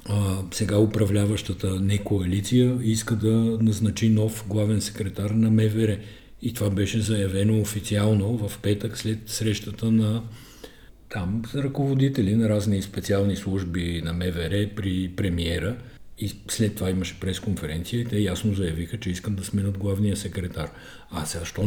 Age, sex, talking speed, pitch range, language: 50-69, male, 140 wpm, 100-120 Hz, Bulgarian